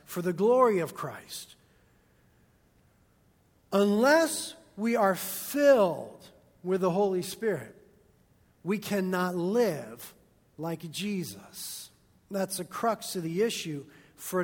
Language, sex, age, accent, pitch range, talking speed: English, male, 50-69, American, 180-230 Hz, 105 wpm